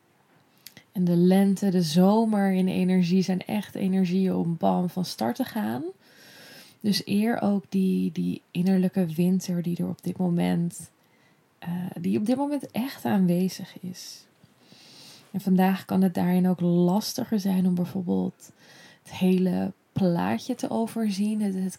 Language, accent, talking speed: Dutch, Dutch, 135 wpm